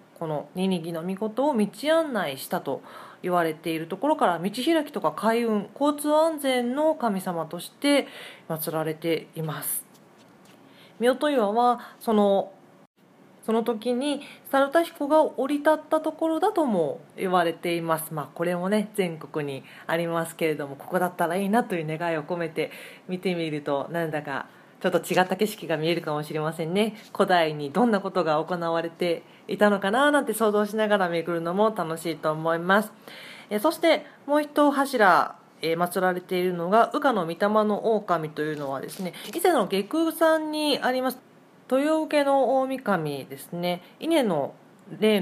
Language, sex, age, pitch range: Japanese, female, 40-59, 165-255 Hz